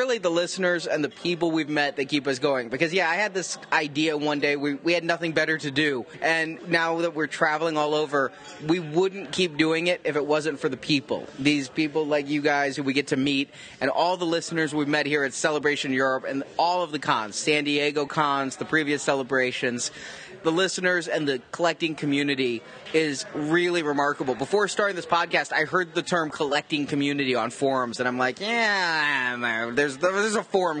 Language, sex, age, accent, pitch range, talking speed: English, male, 30-49, American, 145-190 Hz, 205 wpm